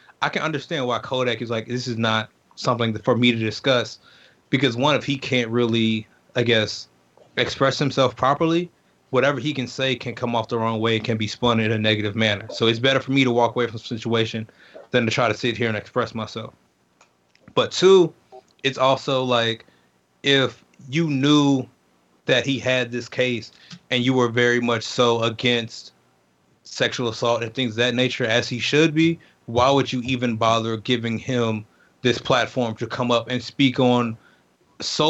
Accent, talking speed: American, 190 wpm